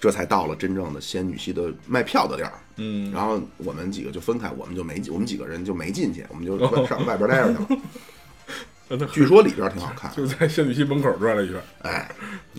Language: Chinese